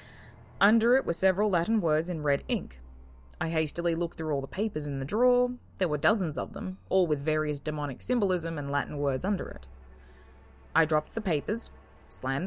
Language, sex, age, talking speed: English, female, 20-39, 190 wpm